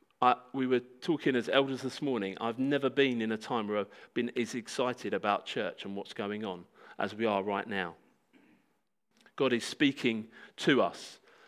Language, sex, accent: English, male, British